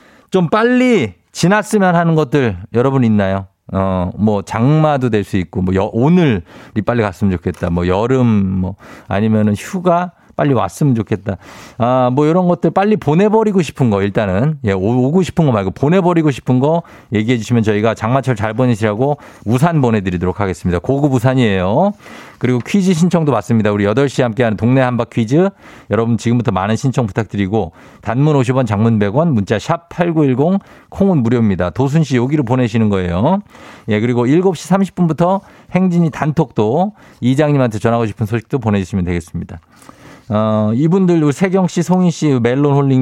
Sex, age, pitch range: male, 50-69, 105-175 Hz